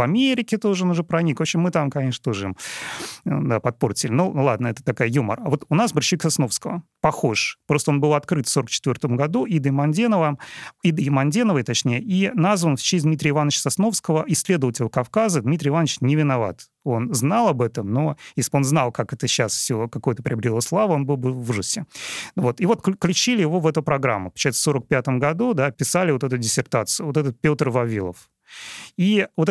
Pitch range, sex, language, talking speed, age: 125-165 Hz, male, Russian, 190 wpm, 30-49